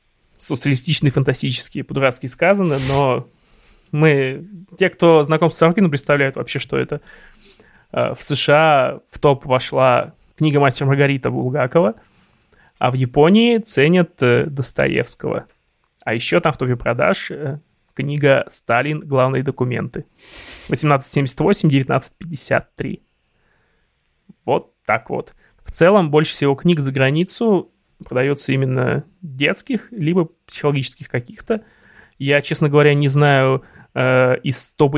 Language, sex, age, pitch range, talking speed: Russian, male, 20-39, 135-165 Hz, 110 wpm